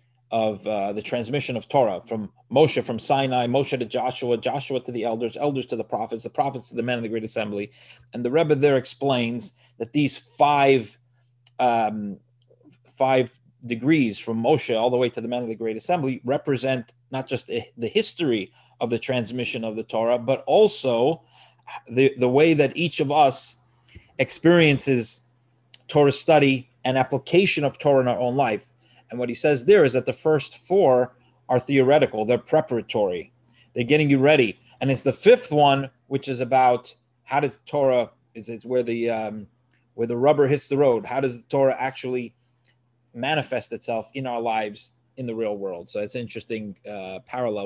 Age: 30-49